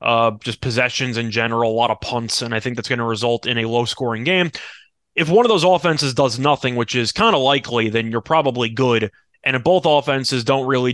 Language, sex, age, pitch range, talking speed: English, male, 20-39, 125-160 Hz, 230 wpm